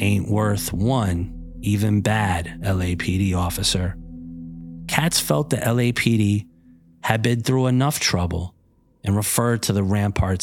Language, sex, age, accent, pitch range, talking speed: English, male, 30-49, American, 95-120 Hz, 120 wpm